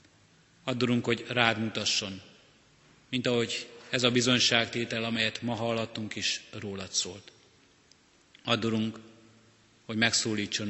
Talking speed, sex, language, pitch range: 95 wpm, male, Hungarian, 105-120 Hz